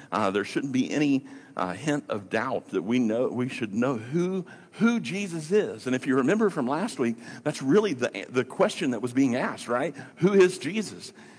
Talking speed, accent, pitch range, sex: 205 wpm, American, 125-185 Hz, male